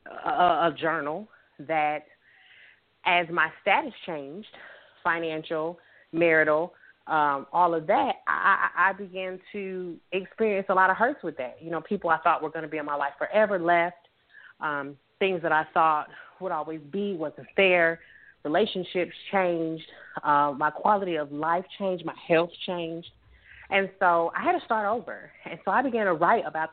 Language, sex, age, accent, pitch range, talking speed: English, female, 30-49, American, 155-185 Hz, 165 wpm